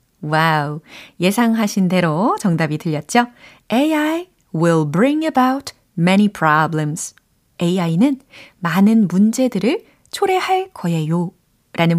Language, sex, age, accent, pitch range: Korean, female, 30-49, native, 170-250 Hz